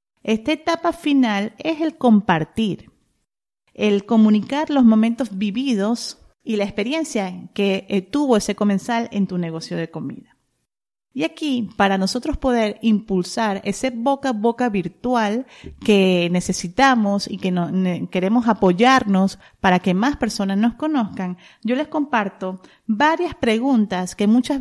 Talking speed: 130 wpm